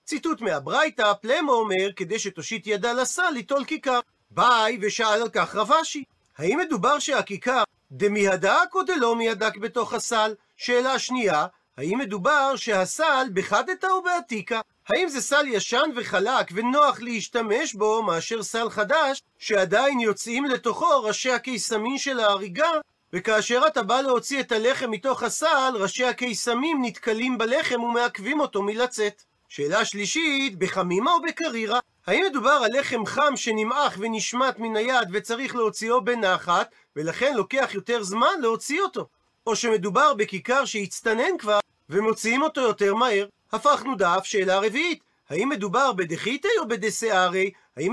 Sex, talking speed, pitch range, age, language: male, 135 wpm, 205-270 Hz, 40-59, Hebrew